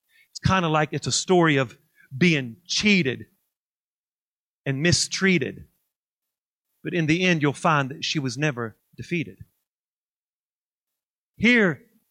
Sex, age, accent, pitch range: male, 40-59, American, 170-240 Hz